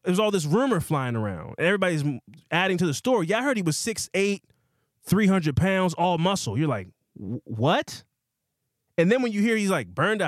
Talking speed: 195 wpm